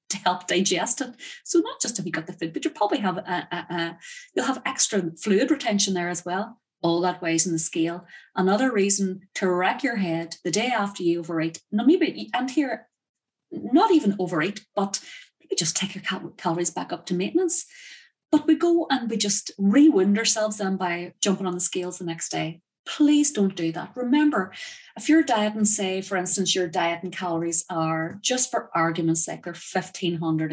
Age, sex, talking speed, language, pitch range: 30-49, female, 195 wpm, English, 170-220 Hz